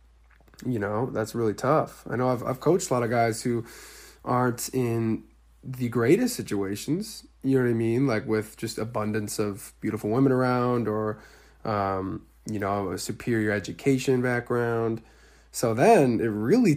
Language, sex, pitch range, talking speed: English, male, 100-120 Hz, 160 wpm